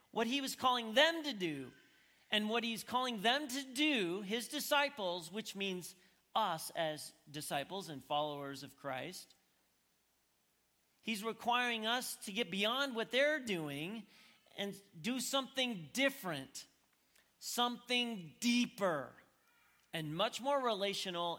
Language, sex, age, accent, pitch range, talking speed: English, male, 40-59, American, 185-255 Hz, 125 wpm